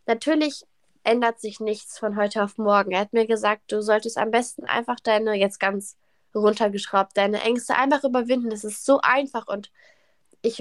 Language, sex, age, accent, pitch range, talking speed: German, female, 10-29, German, 205-230 Hz, 175 wpm